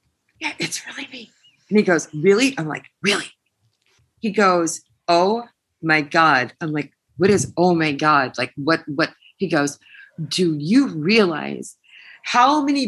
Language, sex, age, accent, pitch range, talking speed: English, female, 40-59, American, 175-275 Hz, 155 wpm